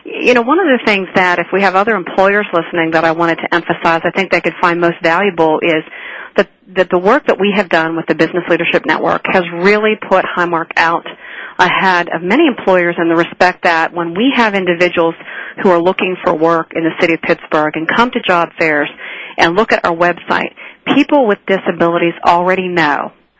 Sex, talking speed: female, 205 wpm